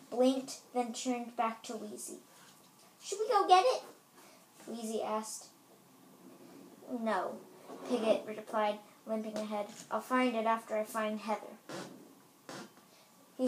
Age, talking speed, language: 10-29, 115 wpm, English